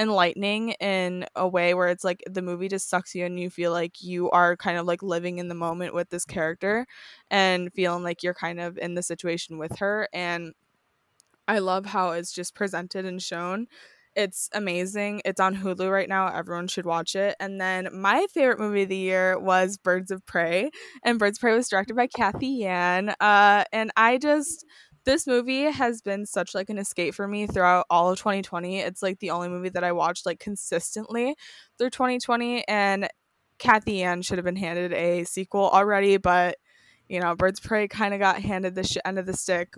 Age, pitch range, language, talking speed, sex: 10-29, 180-210 Hz, English, 205 wpm, female